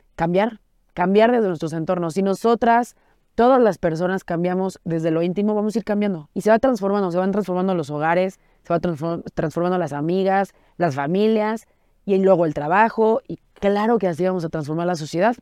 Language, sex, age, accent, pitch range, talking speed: Spanish, female, 30-49, Mexican, 175-220 Hz, 185 wpm